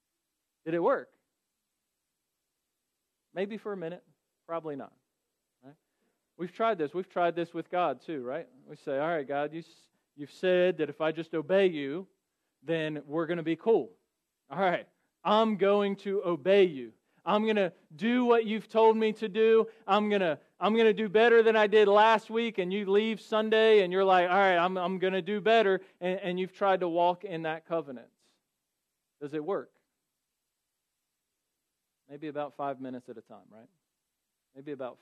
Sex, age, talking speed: male, 40-59, 180 wpm